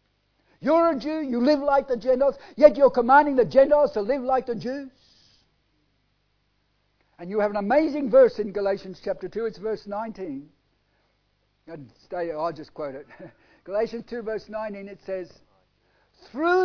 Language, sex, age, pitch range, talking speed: English, male, 60-79, 180-250 Hz, 150 wpm